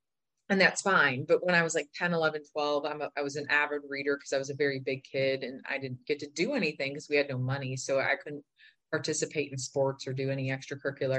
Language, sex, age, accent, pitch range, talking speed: English, female, 30-49, American, 140-175 Hz, 250 wpm